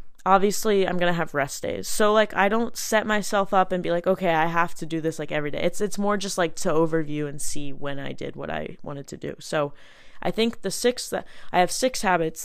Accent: American